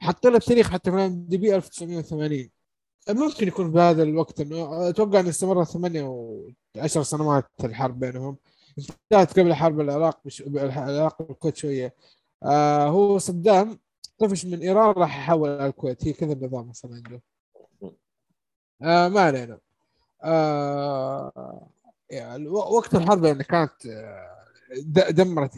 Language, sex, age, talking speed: Arabic, male, 20-39, 120 wpm